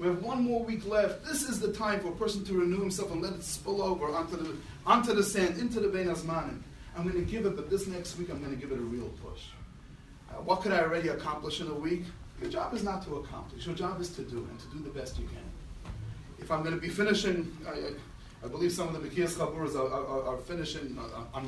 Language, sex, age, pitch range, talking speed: English, male, 30-49, 145-200 Hz, 260 wpm